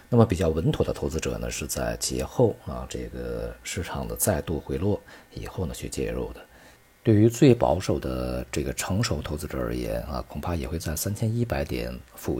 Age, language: 50-69, Chinese